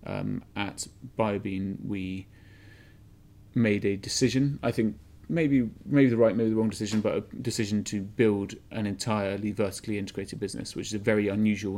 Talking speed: 165 wpm